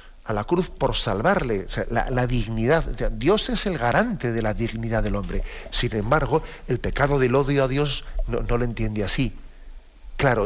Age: 50-69